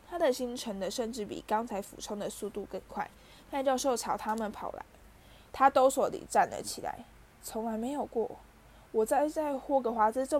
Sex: female